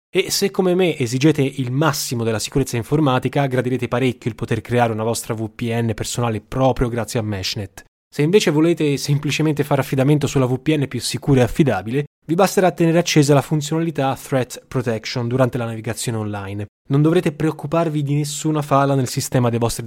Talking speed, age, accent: 170 wpm, 10-29, native